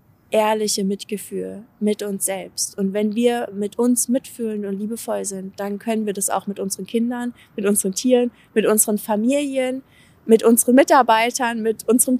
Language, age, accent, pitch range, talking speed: German, 20-39, German, 195-230 Hz, 160 wpm